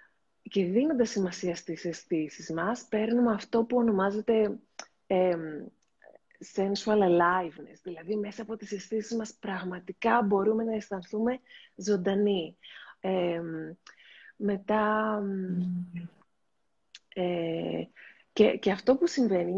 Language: Greek